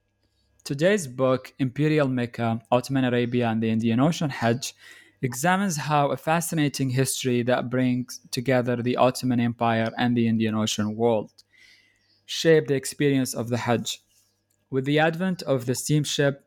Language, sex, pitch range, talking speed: English, male, 120-140 Hz, 140 wpm